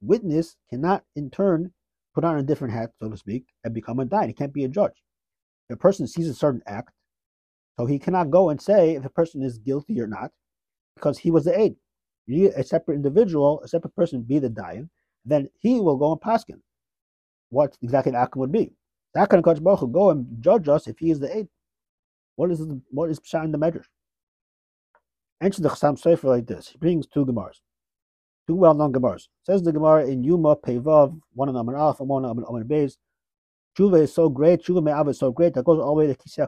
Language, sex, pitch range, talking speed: English, male, 120-160 Hz, 215 wpm